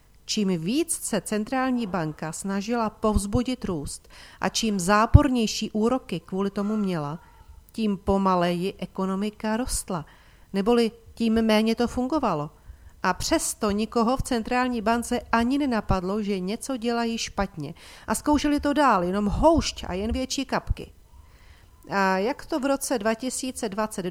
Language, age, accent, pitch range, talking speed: Czech, 40-59, native, 175-230 Hz, 130 wpm